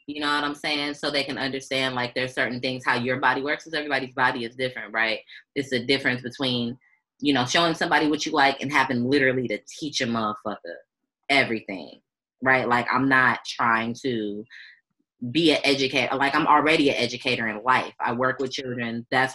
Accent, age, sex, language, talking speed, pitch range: American, 20-39, female, English, 195 wpm, 120-140 Hz